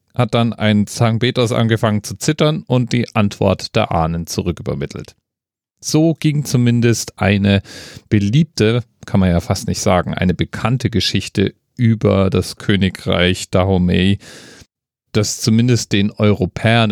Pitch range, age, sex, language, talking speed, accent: 90-120 Hz, 40-59, male, German, 125 wpm, German